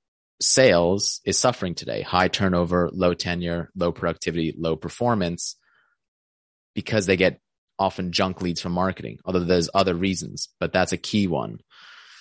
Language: English